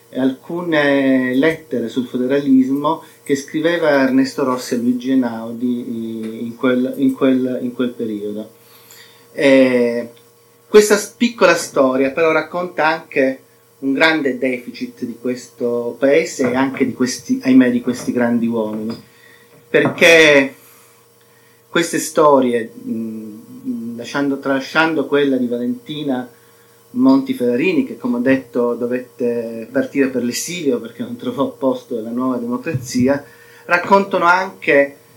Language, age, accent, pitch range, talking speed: Italian, 40-59, native, 120-155 Hz, 115 wpm